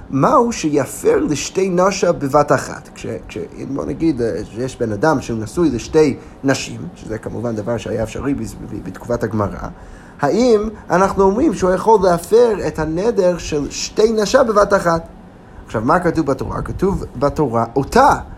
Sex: male